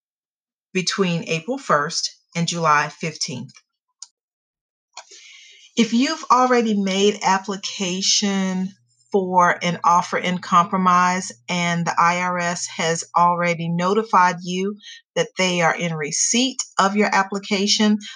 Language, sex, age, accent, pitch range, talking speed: English, female, 40-59, American, 175-225 Hz, 100 wpm